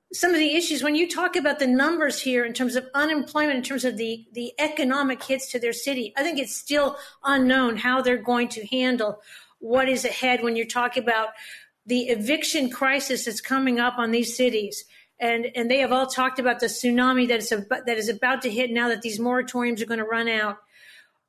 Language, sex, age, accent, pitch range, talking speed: English, female, 50-69, American, 235-270 Hz, 210 wpm